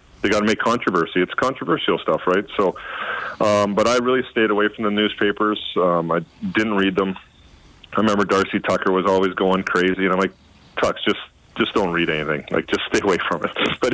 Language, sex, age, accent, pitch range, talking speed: English, male, 40-59, American, 95-110 Hz, 205 wpm